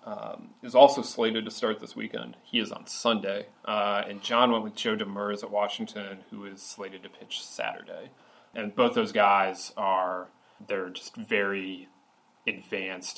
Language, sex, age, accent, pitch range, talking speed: English, male, 30-49, American, 95-105 Hz, 165 wpm